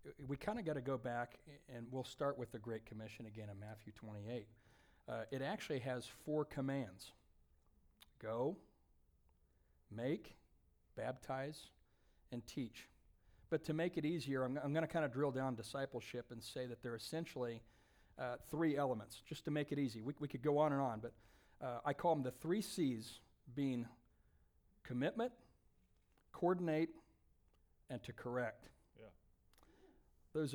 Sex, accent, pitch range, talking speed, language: male, American, 115-150 Hz, 155 wpm, English